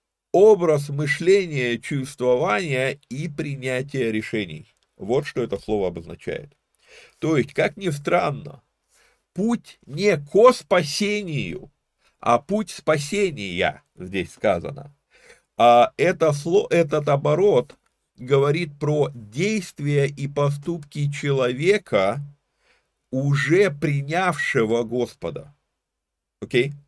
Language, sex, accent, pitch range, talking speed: Russian, male, native, 125-170 Hz, 90 wpm